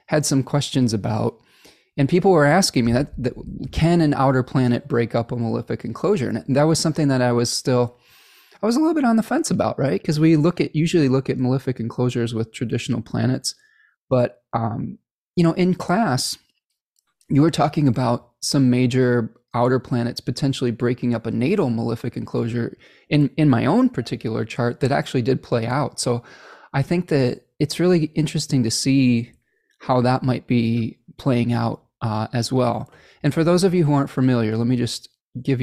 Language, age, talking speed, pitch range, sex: English, 20-39, 190 wpm, 120-150 Hz, male